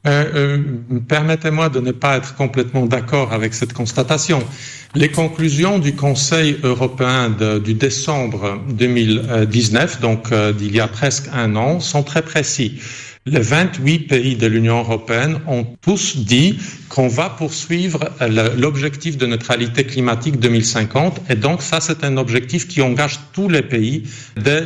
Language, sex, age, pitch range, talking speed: Italian, male, 50-69, 125-160 Hz, 145 wpm